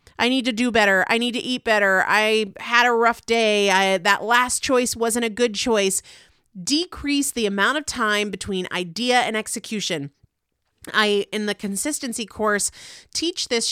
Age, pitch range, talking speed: 40-59, 180-230 Hz, 170 wpm